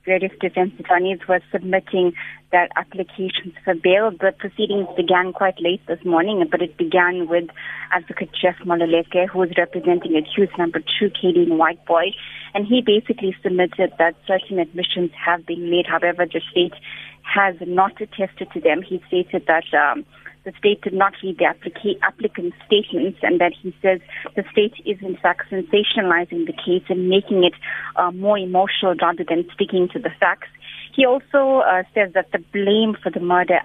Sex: female